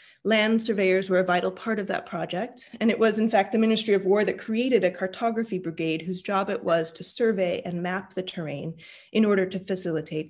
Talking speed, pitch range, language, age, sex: 215 wpm, 185-230 Hz, English, 30-49, female